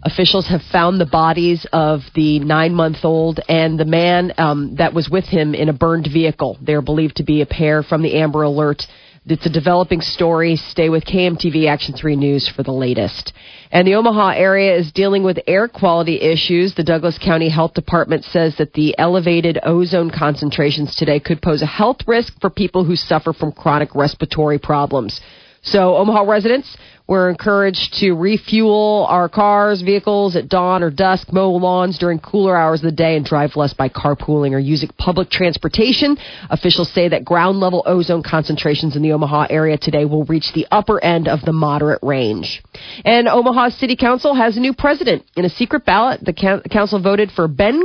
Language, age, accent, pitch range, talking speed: English, 40-59, American, 155-205 Hz, 185 wpm